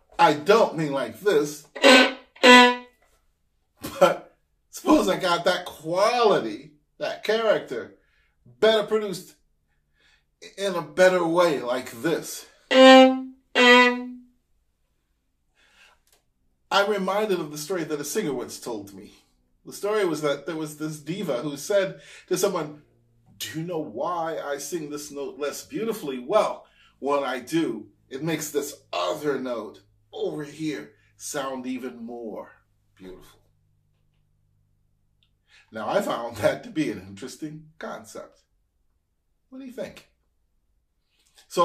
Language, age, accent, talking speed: English, 40-59, American, 120 wpm